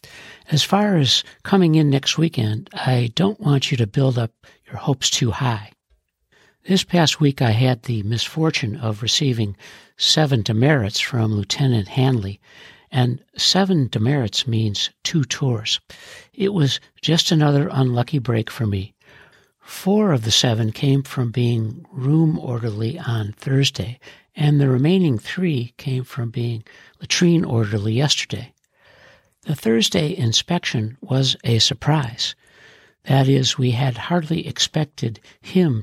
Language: English